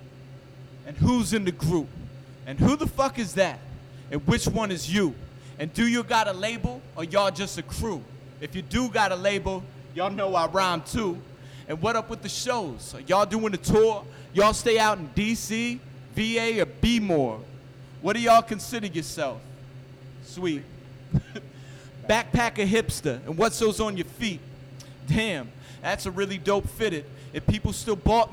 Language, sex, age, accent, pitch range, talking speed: English, male, 30-49, American, 135-220 Hz, 170 wpm